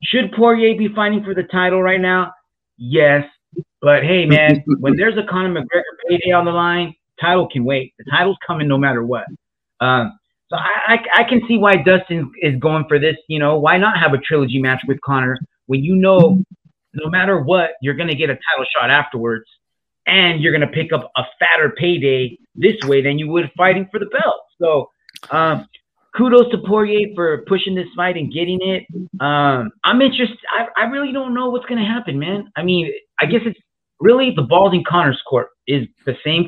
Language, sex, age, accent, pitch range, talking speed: English, male, 30-49, American, 140-185 Hz, 205 wpm